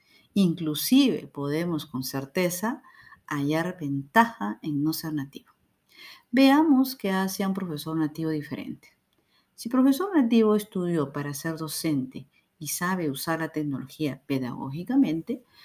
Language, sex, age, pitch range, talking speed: Spanish, female, 50-69, 155-220 Hz, 120 wpm